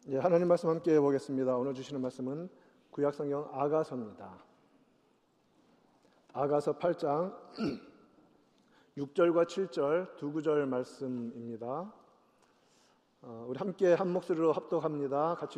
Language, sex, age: Korean, male, 40-59